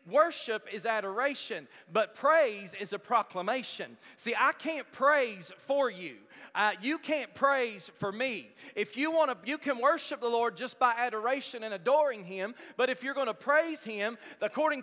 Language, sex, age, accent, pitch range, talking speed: English, male, 40-59, American, 205-285 Hz, 175 wpm